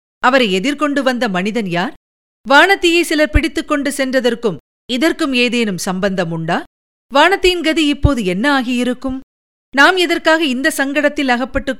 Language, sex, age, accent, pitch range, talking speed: Tamil, female, 50-69, native, 235-305 Hz, 120 wpm